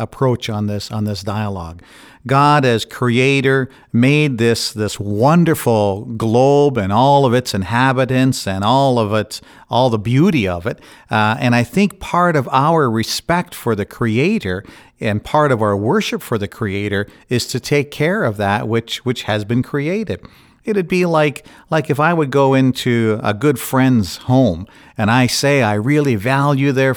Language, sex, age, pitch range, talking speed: English, male, 50-69, 110-150 Hz, 175 wpm